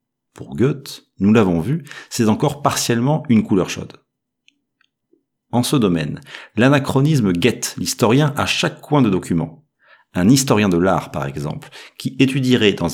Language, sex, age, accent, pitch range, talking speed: English, male, 40-59, French, 95-135 Hz, 145 wpm